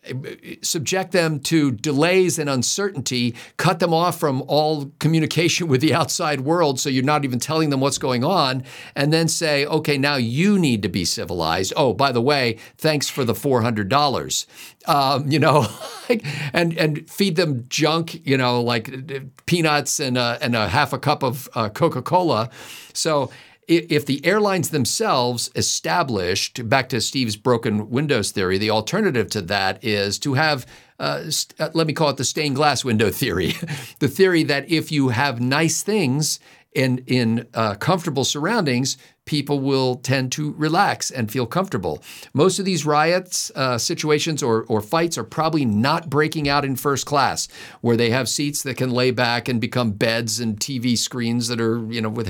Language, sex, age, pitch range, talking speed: English, male, 50-69, 120-155 Hz, 175 wpm